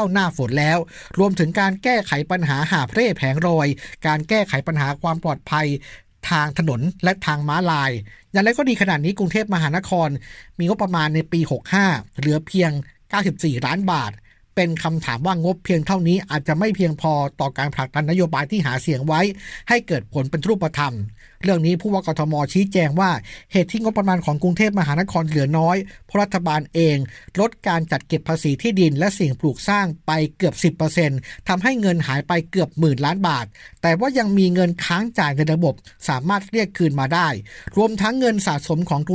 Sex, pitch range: male, 150-190 Hz